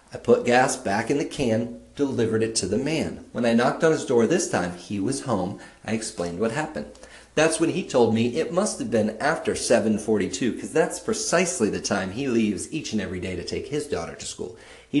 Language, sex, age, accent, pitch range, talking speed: English, male, 40-59, American, 100-145 Hz, 225 wpm